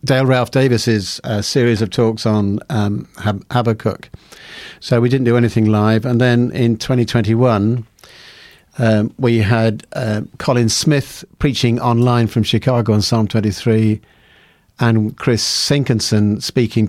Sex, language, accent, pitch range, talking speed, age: male, English, British, 110-125 Hz, 130 wpm, 50-69